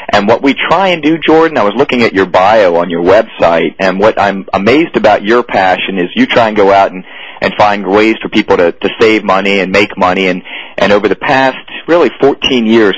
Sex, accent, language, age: male, American, English, 40-59